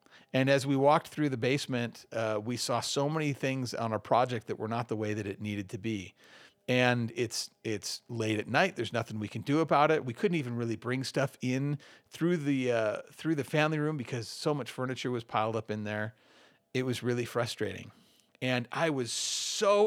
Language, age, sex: English, 40-59, male